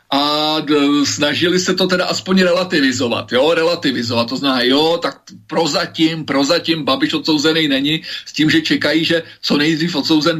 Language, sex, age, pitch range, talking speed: Slovak, male, 40-59, 150-185 Hz, 155 wpm